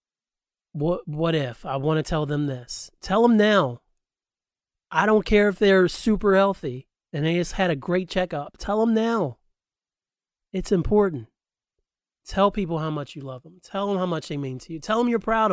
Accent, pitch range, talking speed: American, 140-205 Hz, 195 wpm